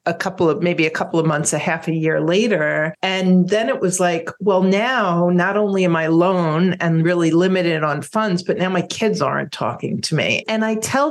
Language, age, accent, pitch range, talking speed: English, 50-69, American, 160-205 Hz, 220 wpm